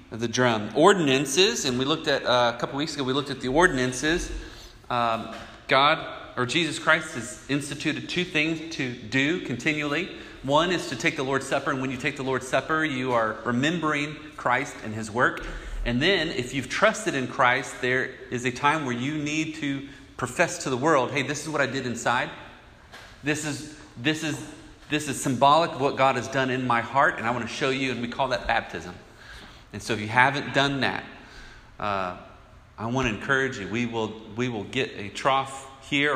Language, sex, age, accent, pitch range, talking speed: English, male, 30-49, American, 120-145 Hz, 205 wpm